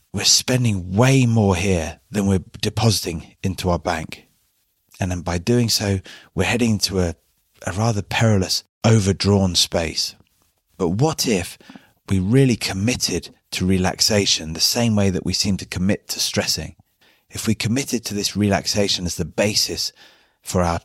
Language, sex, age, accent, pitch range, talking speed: English, male, 30-49, British, 95-110 Hz, 155 wpm